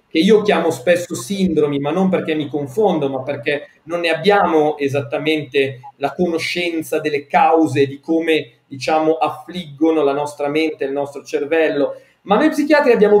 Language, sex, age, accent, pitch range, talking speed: Italian, male, 40-59, native, 145-195 Hz, 155 wpm